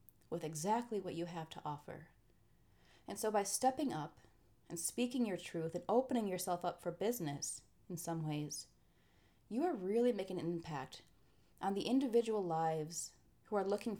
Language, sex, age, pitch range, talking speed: English, female, 30-49, 160-205 Hz, 165 wpm